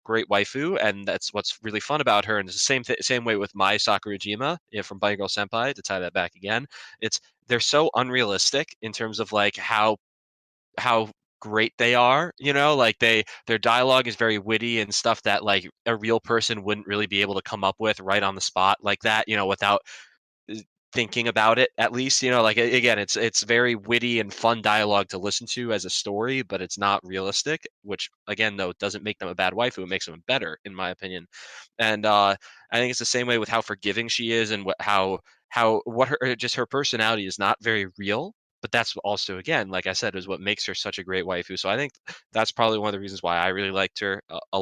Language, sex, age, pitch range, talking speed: English, male, 20-39, 95-115 Hz, 230 wpm